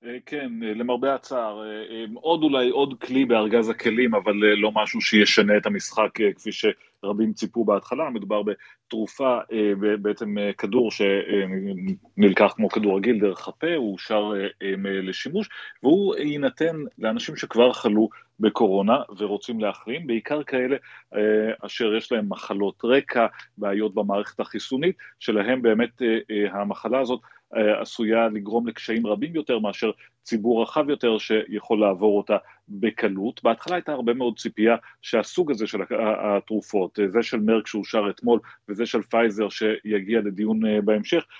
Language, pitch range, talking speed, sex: Hebrew, 105-130 Hz, 125 wpm, male